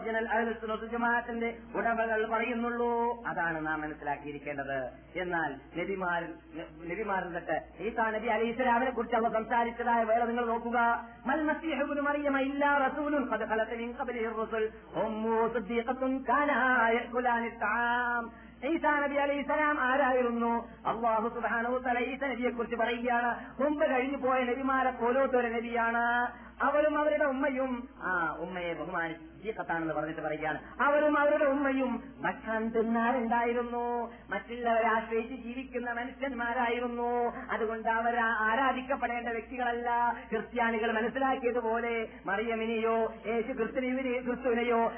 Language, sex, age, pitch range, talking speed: Malayalam, male, 30-49, 225-260 Hz, 70 wpm